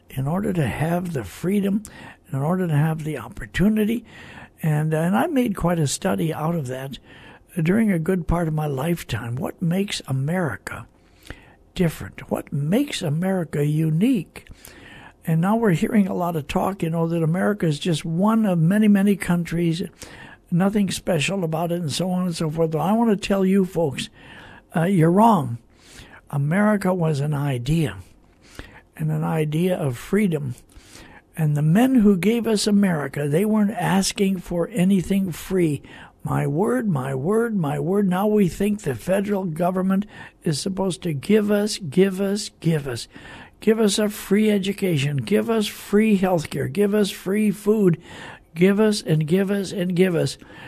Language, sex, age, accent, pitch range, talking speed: English, male, 60-79, American, 155-200 Hz, 165 wpm